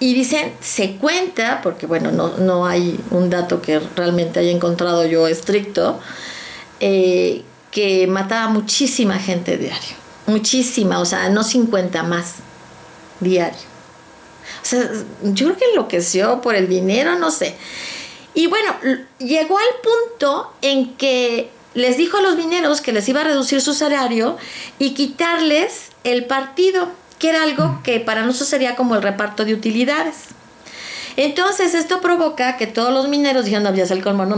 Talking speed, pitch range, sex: 155 wpm, 195-295 Hz, female